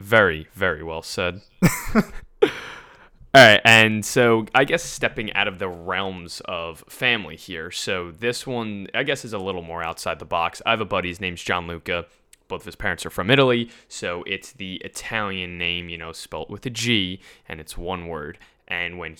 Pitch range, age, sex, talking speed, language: 90-105 Hz, 20-39, male, 195 wpm, English